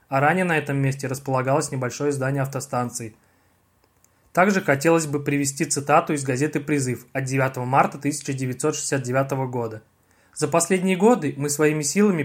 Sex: male